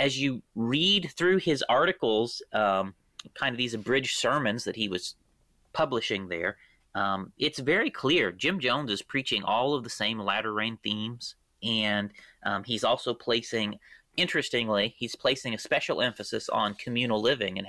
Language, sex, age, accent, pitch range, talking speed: English, male, 30-49, American, 105-140 Hz, 165 wpm